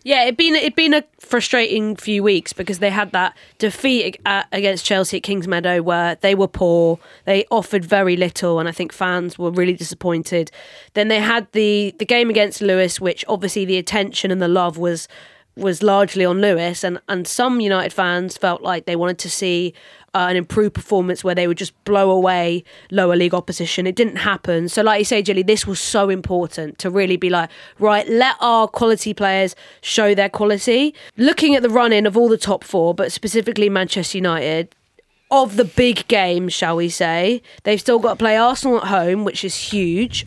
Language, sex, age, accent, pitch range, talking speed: English, female, 20-39, British, 180-215 Hz, 200 wpm